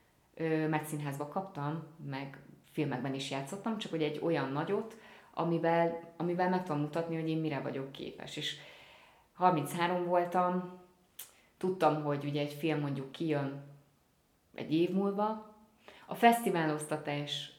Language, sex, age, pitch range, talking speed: Hungarian, female, 30-49, 150-185 Hz, 125 wpm